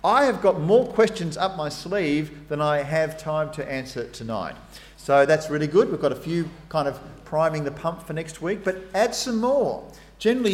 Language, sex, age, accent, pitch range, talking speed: English, male, 40-59, Australian, 130-175 Hz, 205 wpm